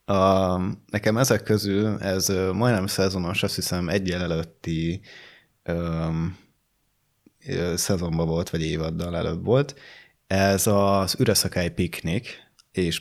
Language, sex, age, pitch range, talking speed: Hungarian, male, 20-39, 85-105 Hz, 105 wpm